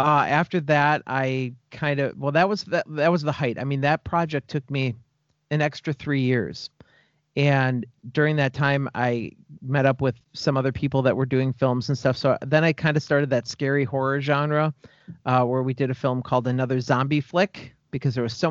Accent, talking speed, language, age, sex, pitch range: American, 210 wpm, English, 40-59, male, 130-150 Hz